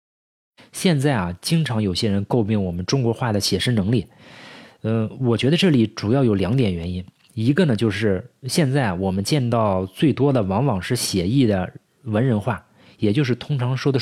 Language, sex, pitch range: Chinese, male, 100-140 Hz